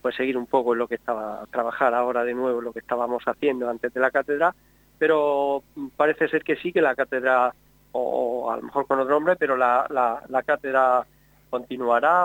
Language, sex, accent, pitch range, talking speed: Spanish, male, Spanish, 125-150 Hz, 205 wpm